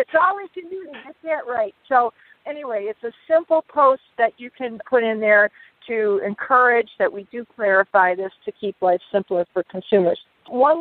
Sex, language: female, English